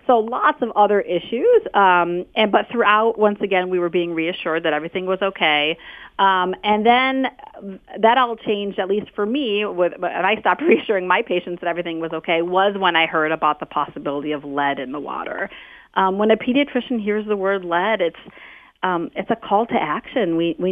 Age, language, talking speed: 40-59, English, 200 wpm